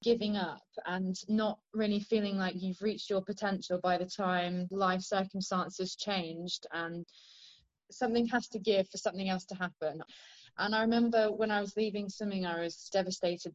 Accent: British